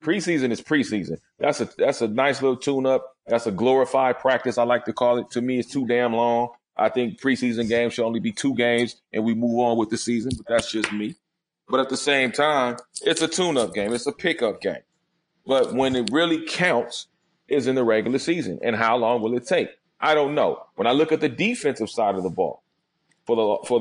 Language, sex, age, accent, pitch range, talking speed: English, male, 30-49, American, 105-125 Hz, 225 wpm